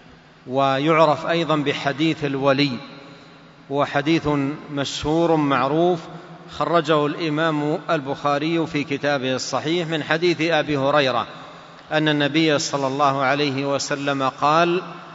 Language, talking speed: Indonesian, 95 wpm